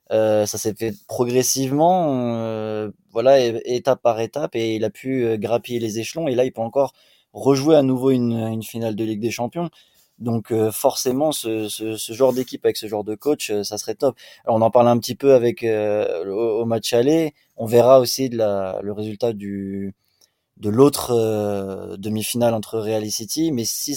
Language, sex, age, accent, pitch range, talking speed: French, male, 20-39, French, 110-130 Hz, 205 wpm